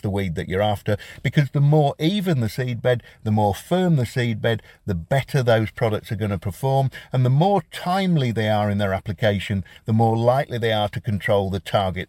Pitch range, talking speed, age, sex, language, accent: 105-145 Hz, 210 wpm, 50-69, male, English, British